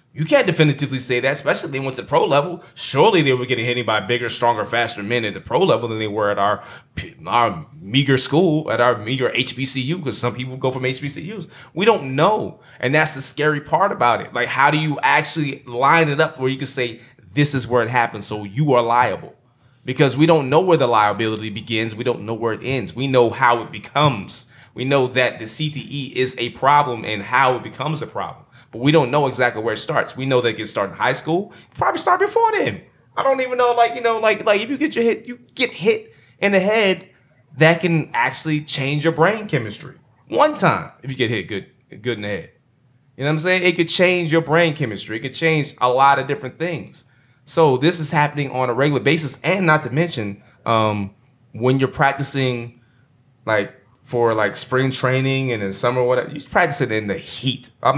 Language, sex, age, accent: English, male, 20-39, American